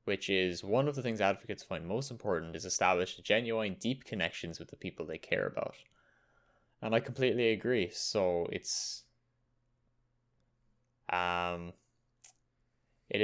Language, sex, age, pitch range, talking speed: English, male, 10-29, 85-120 Hz, 130 wpm